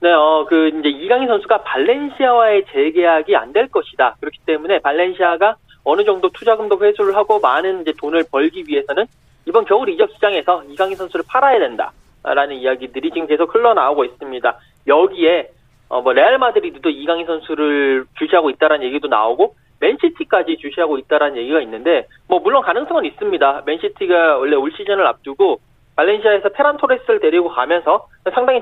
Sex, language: male, Korean